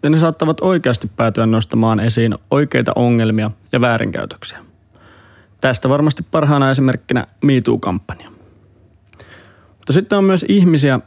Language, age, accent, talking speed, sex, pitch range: Finnish, 30-49, native, 115 wpm, male, 110-135 Hz